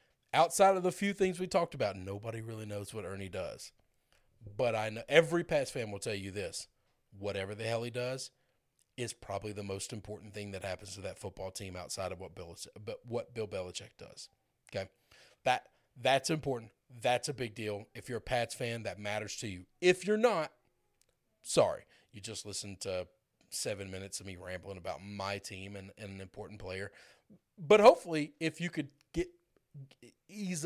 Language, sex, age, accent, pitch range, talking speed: English, male, 40-59, American, 100-140 Hz, 185 wpm